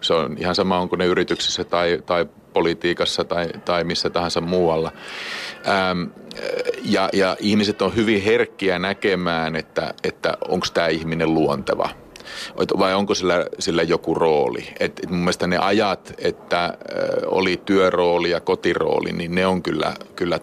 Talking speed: 140 wpm